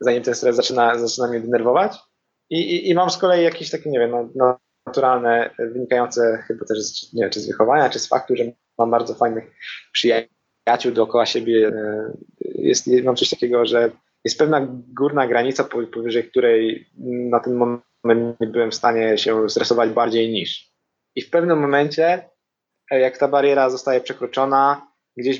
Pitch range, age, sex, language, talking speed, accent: 120-135 Hz, 20-39, male, Polish, 160 wpm, native